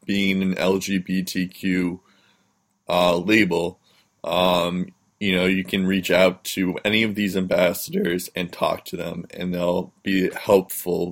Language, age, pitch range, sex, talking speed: English, 20-39, 90-110 Hz, male, 135 wpm